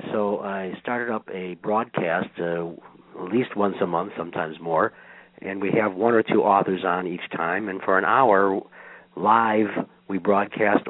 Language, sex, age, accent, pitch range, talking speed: English, male, 60-79, American, 90-115 Hz, 170 wpm